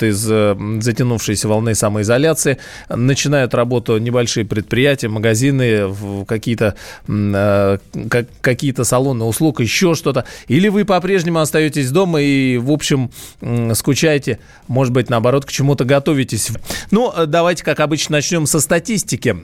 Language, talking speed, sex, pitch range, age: Russian, 115 wpm, male, 120-160 Hz, 20-39